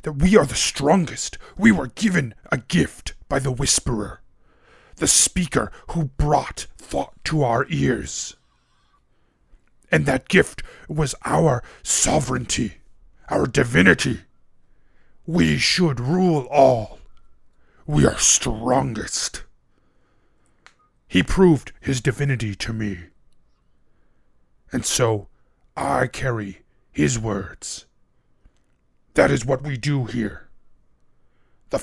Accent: American